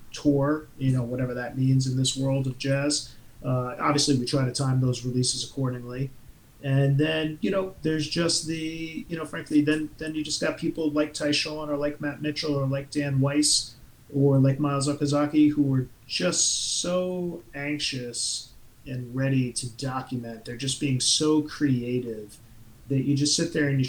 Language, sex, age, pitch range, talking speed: English, male, 40-59, 130-150 Hz, 180 wpm